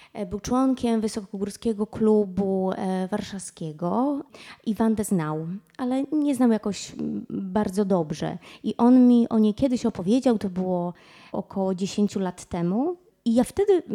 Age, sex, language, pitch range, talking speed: 20-39, female, Polish, 195-235 Hz, 130 wpm